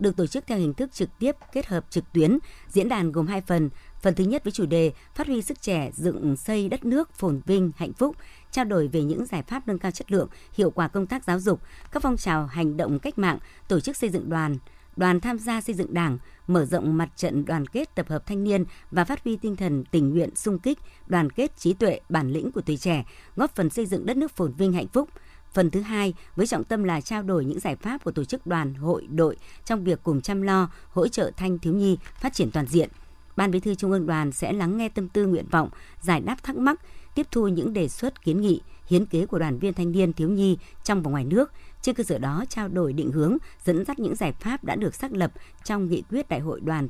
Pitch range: 160-215 Hz